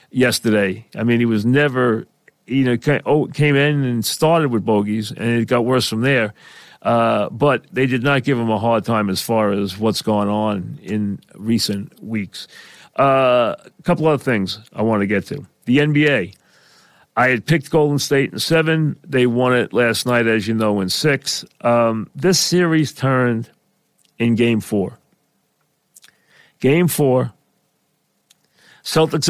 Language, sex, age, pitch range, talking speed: English, male, 40-59, 110-145 Hz, 160 wpm